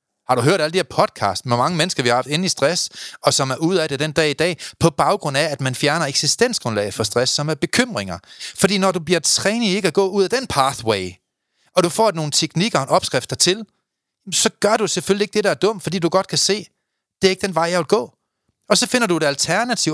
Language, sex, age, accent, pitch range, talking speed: Danish, male, 30-49, native, 135-195 Hz, 260 wpm